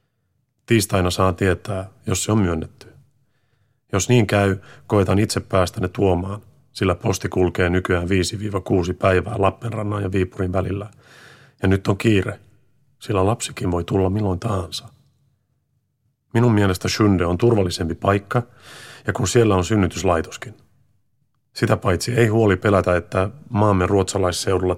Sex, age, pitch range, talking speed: male, 30-49, 95-120 Hz, 130 wpm